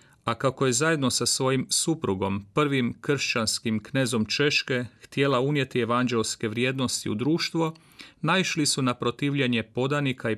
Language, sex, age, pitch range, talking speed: Croatian, male, 40-59, 120-145 Hz, 135 wpm